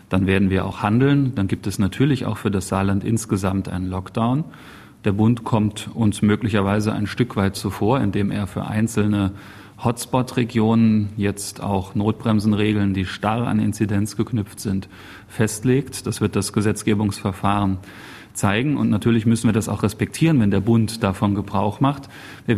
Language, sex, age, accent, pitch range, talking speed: German, male, 30-49, German, 100-115 Hz, 155 wpm